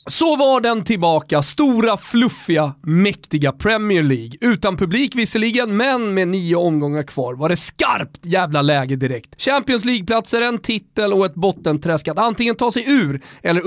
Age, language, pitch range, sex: 30-49, Swedish, 150-225 Hz, male